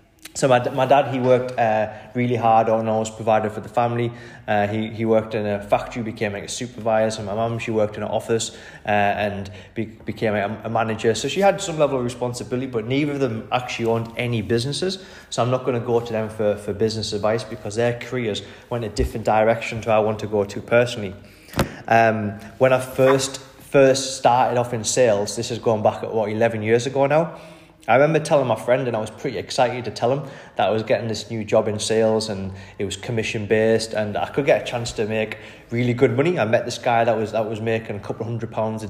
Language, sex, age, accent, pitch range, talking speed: English, male, 20-39, British, 110-130 Hz, 240 wpm